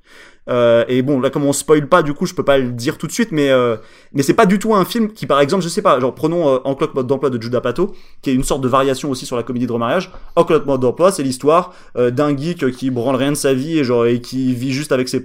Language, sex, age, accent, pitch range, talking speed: French, male, 20-39, French, 125-155 Hz, 305 wpm